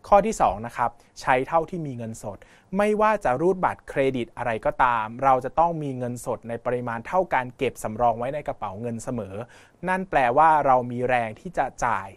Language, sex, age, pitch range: Thai, male, 20-39, 115-155 Hz